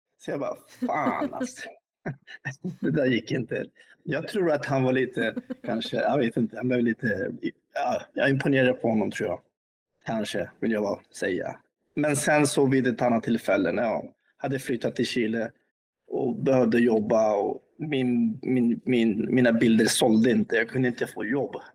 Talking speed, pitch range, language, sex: 170 wpm, 115-140 Hz, Swedish, male